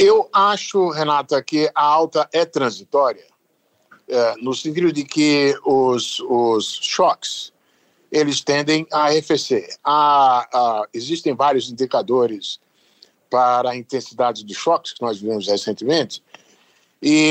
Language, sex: Portuguese, male